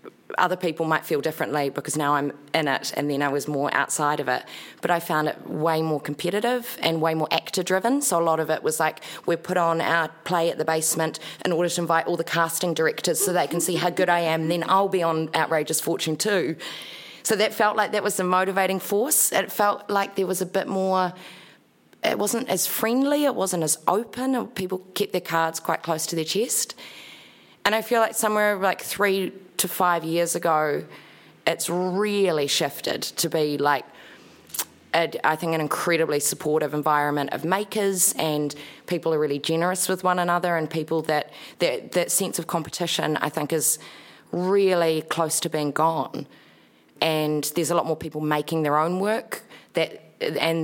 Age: 30-49